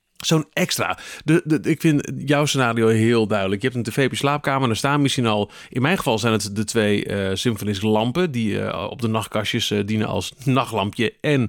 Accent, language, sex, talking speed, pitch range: Dutch, Dutch, male, 215 wpm, 110-135 Hz